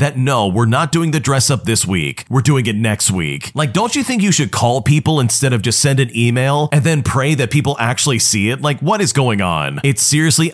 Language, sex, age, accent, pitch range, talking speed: English, male, 40-59, American, 110-145 Hz, 250 wpm